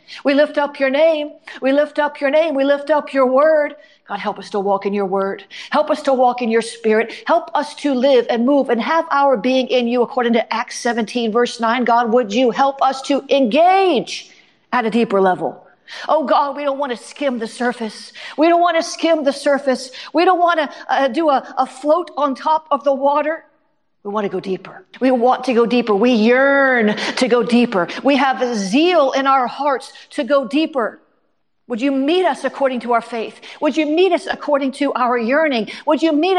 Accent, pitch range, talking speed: American, 245-305 Hz, 220 wpm